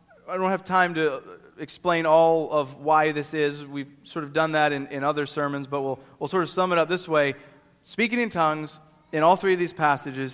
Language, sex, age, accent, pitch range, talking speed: English, male, 30-49, American, 145-185 Hz, 225 wpm